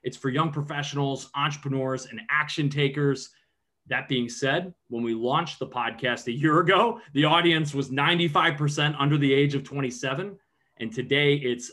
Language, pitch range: English, 125-150 Hz